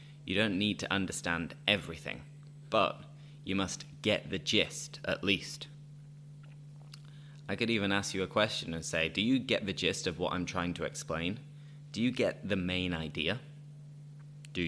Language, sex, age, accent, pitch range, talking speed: English, male, 20-39, British, 100-145 Hz, 170 wpm